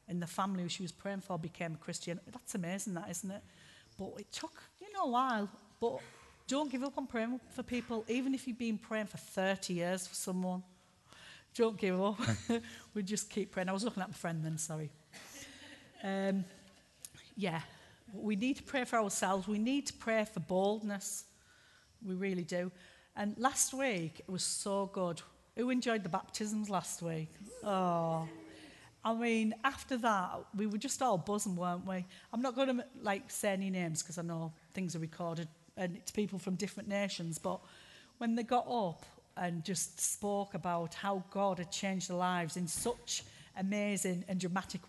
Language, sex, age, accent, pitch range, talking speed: English, female, 40-59, British, 180-225 Hz, 185 wpm